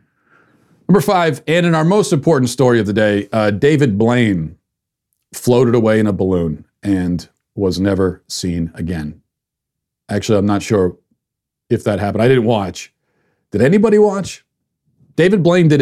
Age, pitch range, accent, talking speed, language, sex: 40-59, 110-145 Hz, American, 150 wpm, English, male